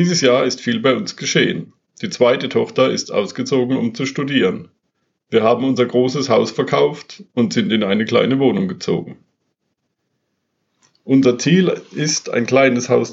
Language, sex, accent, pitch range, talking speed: German, male, German, 120-150 Hz, 155 wpm